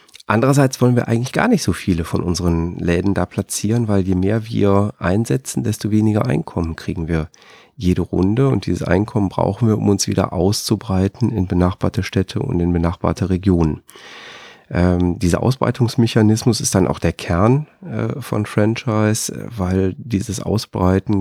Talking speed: 155 wpm